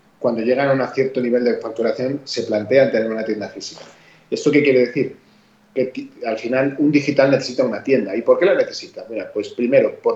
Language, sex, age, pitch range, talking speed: Spanish, male, 30-49, 115-150 Hz, 205 wpm